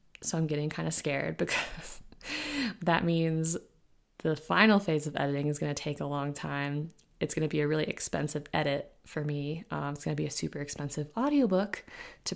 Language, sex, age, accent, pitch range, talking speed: English, female, 20-39, American, 150-190 Hz, 200 wpm